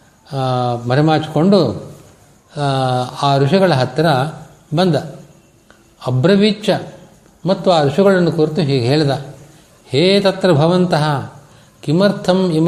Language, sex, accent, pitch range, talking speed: Kannada, male, native, 140-180 Hz, 70 wpm